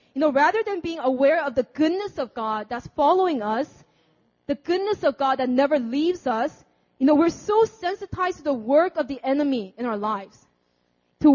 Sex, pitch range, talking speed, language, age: female, 215-315 Hz, 195 wpm, English, 20-39